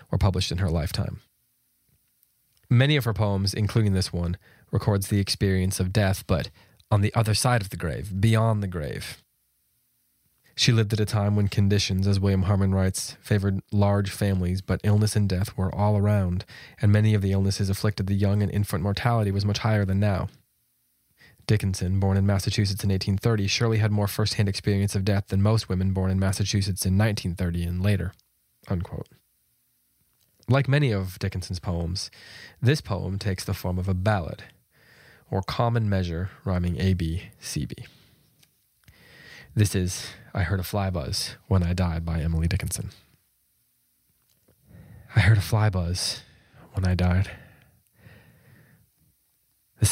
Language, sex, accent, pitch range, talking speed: English, male, American, 95-105 Hz, 155 wpm